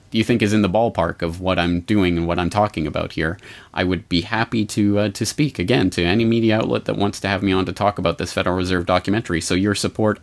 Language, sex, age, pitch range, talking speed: English, male, 30-49, 90-130 Hz, 265 wpm